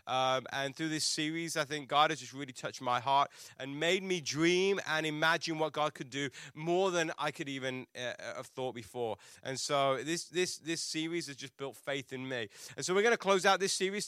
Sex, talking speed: male, 230 wpm